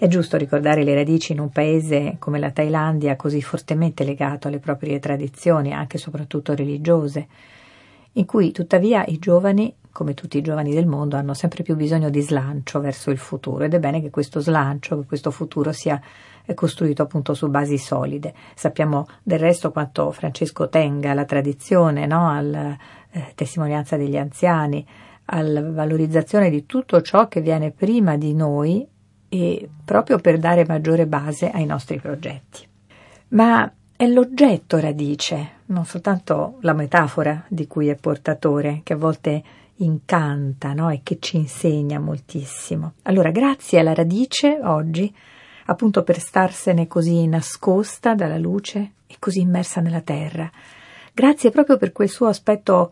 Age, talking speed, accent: 50-69, 150 wpm, native